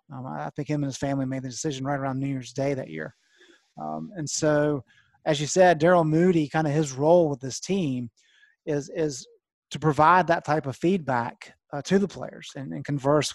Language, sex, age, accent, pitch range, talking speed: English, male, 30-49, American, 135-160 Hz, 210 wpm